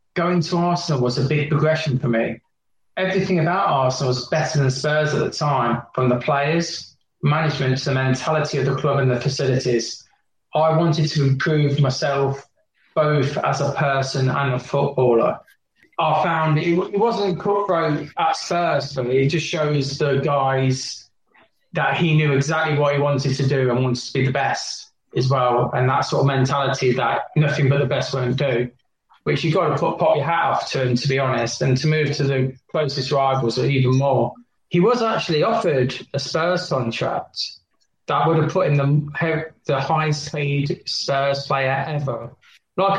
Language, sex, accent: English, male, British